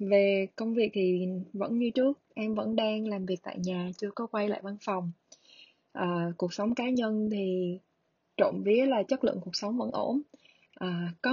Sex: female